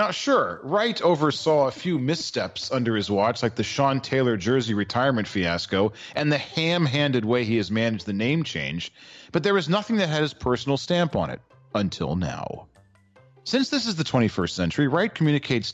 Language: English